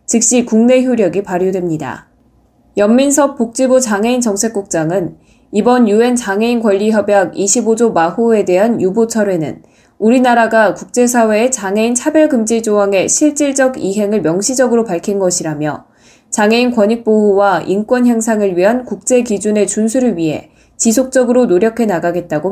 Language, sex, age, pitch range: Korean, female, 20-39, 185-240 Hz